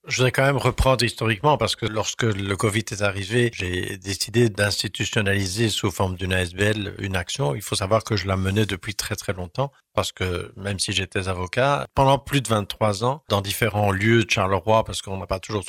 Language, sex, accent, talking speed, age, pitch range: French, male, French, 205 wpm, 50-69, 95-110 Hz